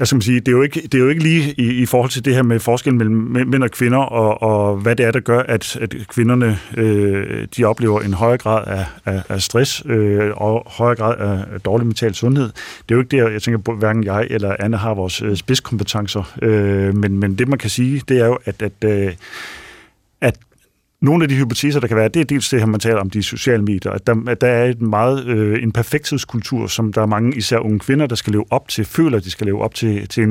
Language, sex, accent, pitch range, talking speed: Danish, male, native, 105-125 Hz, 245 wpm